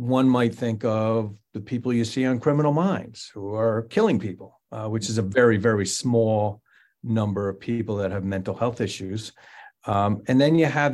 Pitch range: 105-130 Hz